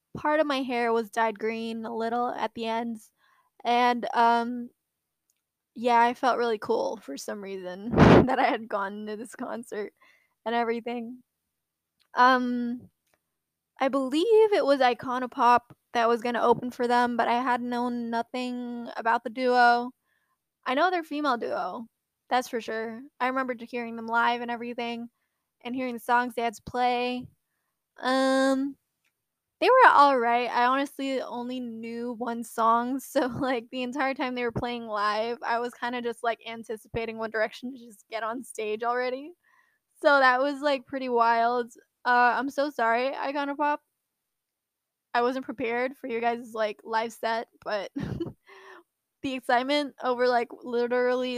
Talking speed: 160 wpm